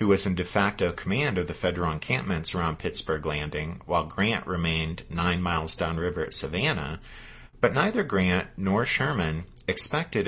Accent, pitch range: American, 90-115 Hz